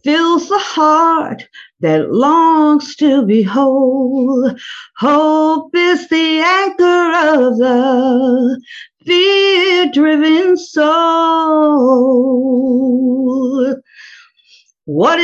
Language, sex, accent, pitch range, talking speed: English, female, American, 255-350 Hz, 65 wpm